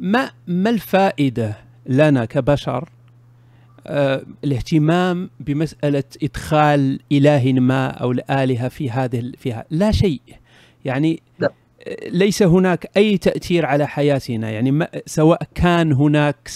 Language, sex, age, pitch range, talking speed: Arabic, male, 40-59, 125-155 Hz, 100 wpm